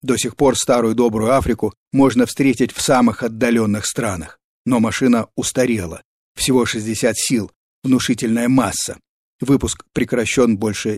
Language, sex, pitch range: Russian, male, 115-145 Hz